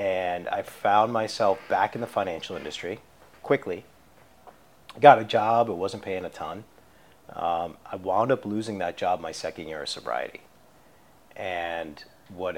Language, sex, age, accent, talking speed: English, male, 40-59, American, 155 wpm